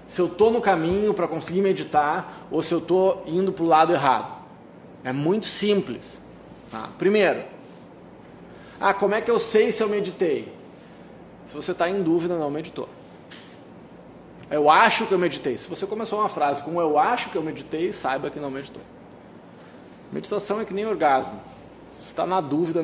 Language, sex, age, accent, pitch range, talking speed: Portuguese, male, 20-39, Brazilian, 155-205 Hz, 180 wpm